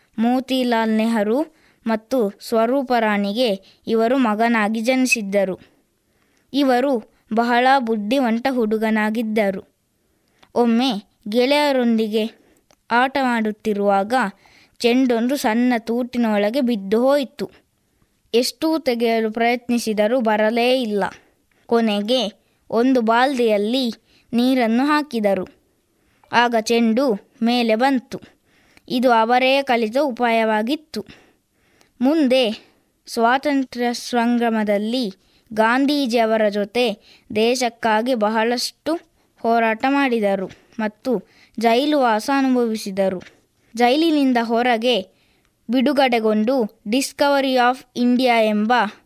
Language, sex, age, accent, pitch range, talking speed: Kannada, female, 20-39, native, 220-255 Hz, 70 wpm